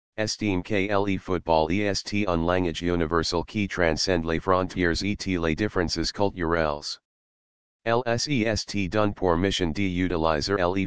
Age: 40-59